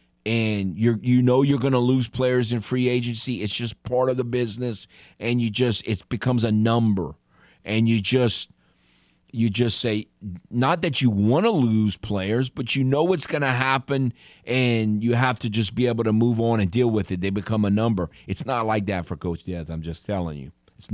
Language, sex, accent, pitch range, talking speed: English, male, American, 85-120 Hz, 215 wpm